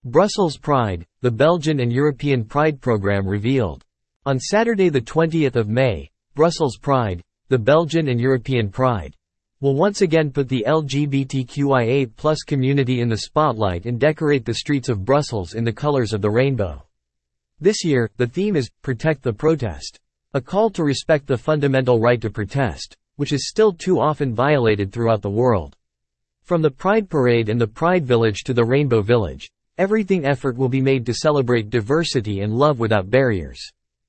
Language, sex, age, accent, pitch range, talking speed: English, male, 50-69, American, 115-150 Hz, 165 wpm